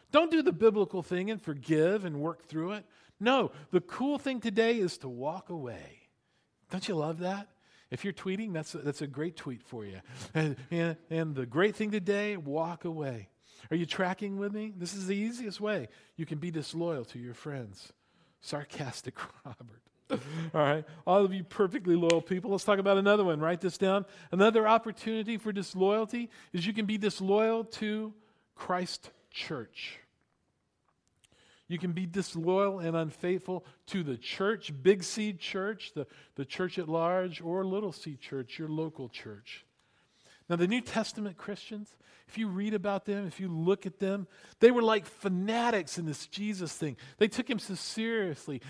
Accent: American